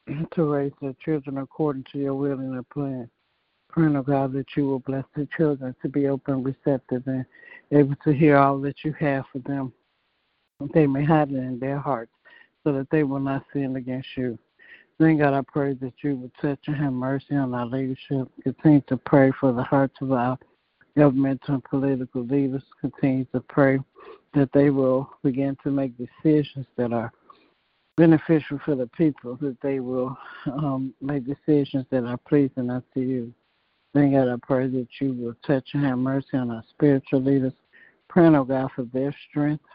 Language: English